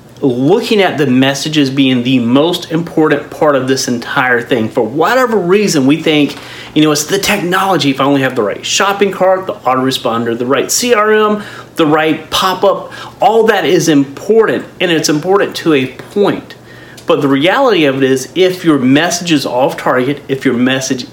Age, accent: 40-59, American